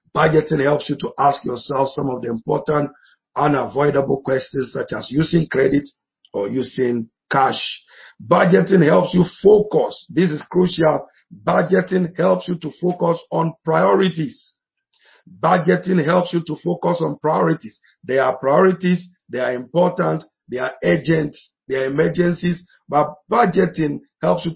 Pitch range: 145-175 Hz